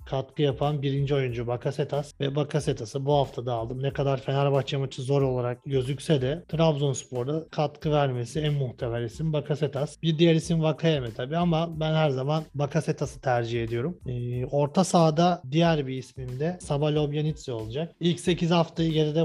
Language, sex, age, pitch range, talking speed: Turkish, male, 40-59, 135-160 Hz, 160 wpm